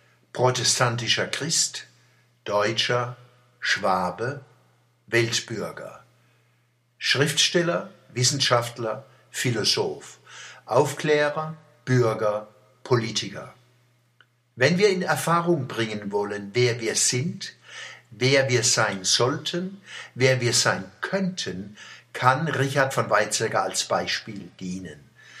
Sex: male